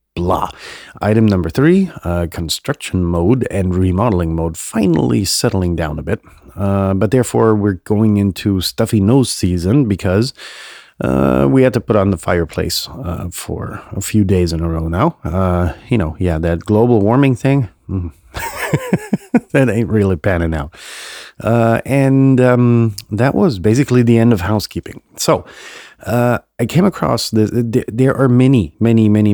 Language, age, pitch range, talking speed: English, 30-49, 90-115 Hz, 160 wpm